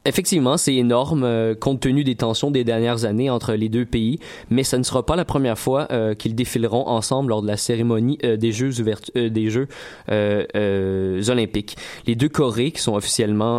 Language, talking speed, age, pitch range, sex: French, 195 wpm, 20-39, 110-130 Hz, male